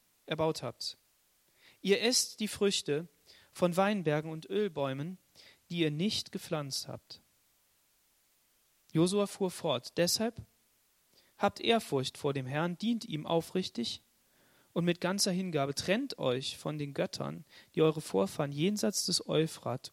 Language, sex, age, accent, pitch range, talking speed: German, male, 40-59, German, 140-195 Hz, 125 wpm